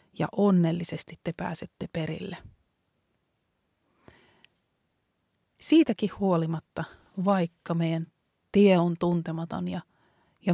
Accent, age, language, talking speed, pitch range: native, 30-49, Finnish, 80 wpm, 165-195 Hz